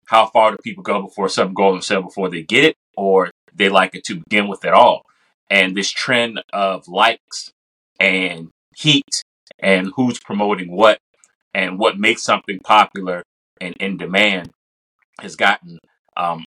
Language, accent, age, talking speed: English, American, 30-49, 165 wpm